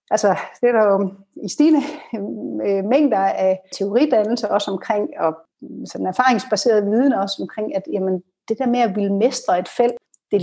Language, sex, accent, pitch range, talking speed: Danish, female, native, 205-260 Hz, 160 wpm